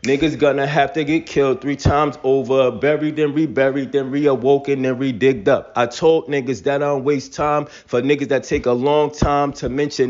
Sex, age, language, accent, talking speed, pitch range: male, 20-39, English, American, 200 wpm, 125-145 Hz